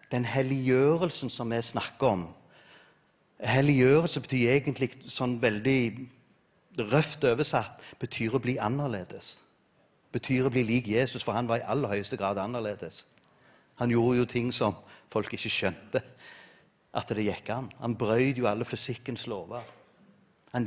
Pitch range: 120-170 Hz